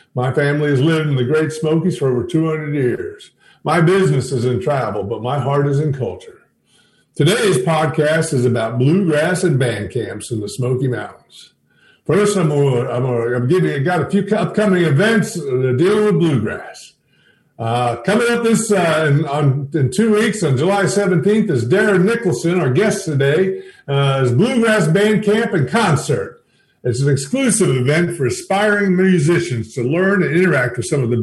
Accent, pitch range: American, 130-190 Hz